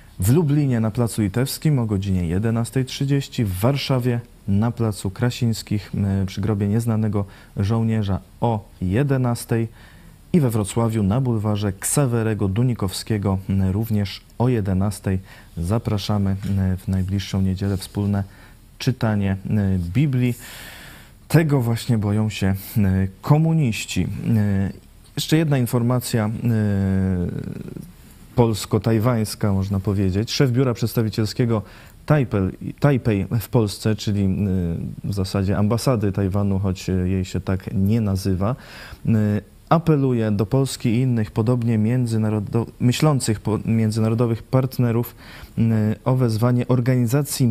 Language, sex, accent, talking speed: Polish, male, native, 95 wpm